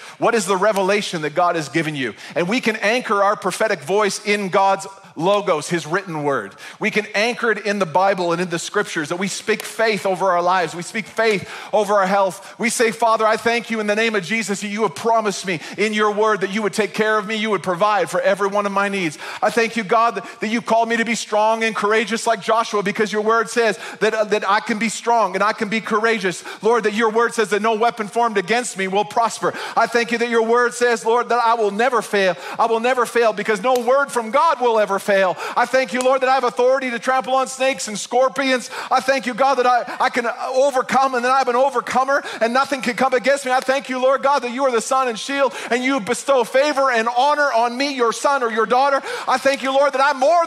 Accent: American